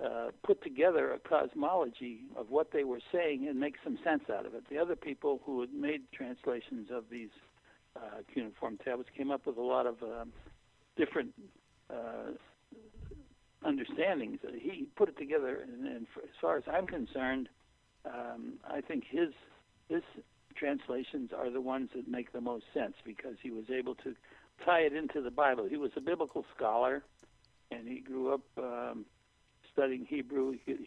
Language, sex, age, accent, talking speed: English, male, 60-79, American, 170 wpm